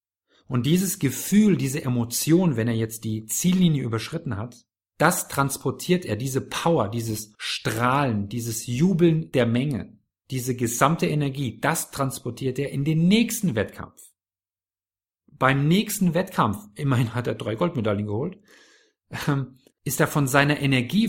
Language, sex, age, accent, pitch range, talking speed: German, male, 50-69, German, 110-160 Hz, 135 wpm